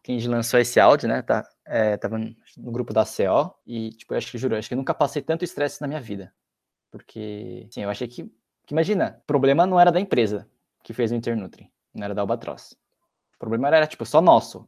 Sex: male